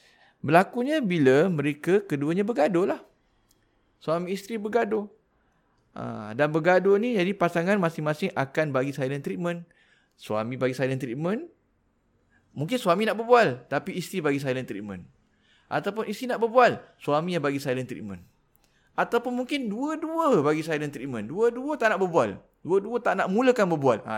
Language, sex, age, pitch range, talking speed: Malay, male, 20-39, 130-195 Hz, 145 wpm